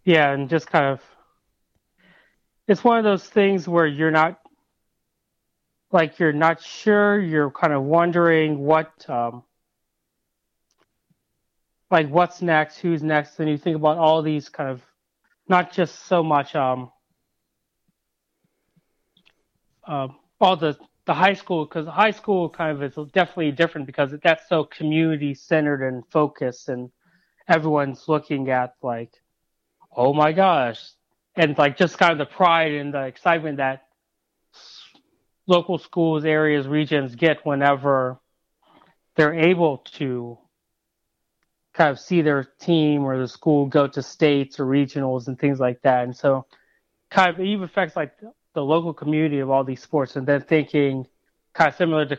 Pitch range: 140-170 Hz